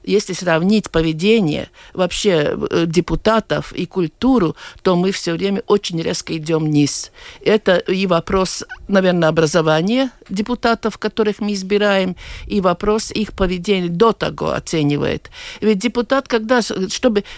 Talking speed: 120 wpm